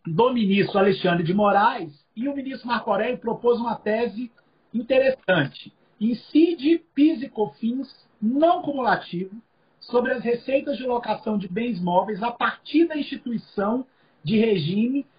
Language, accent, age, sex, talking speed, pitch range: Portuguese, Brazilian, 40-59, male, 135 wpm, 205-275 Hz